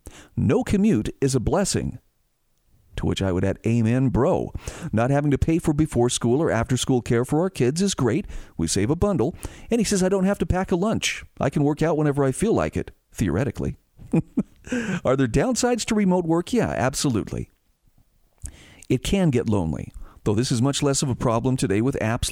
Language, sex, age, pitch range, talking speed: English, male, 40-59, 115-165 Hz, 200 wpm